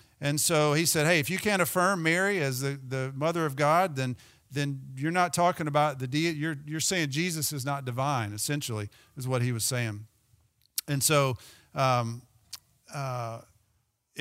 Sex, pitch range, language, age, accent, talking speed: male, 130-175 Hz, English, 40-59, American, 175 wpm